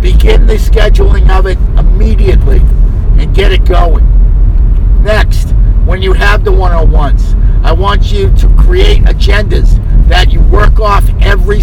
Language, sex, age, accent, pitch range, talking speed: English, male, 50-69, American, 90-110 Hz, 135 wpm